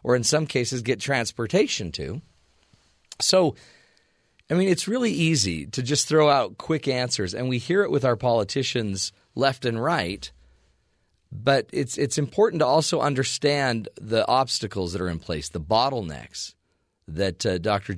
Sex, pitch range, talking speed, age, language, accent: male, 100-145 Hz, 155 wpm, 40-59, English, American